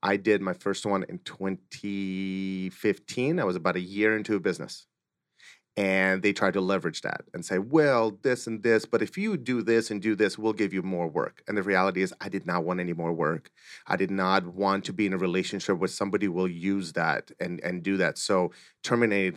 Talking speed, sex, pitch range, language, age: 220 wpm, male, 95-115 Hz, English, 30-49